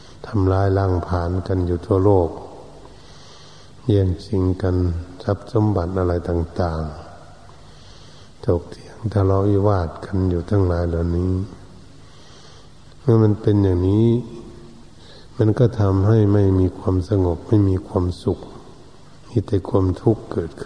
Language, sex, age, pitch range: Thai, male, 60-79, 90-110 Hz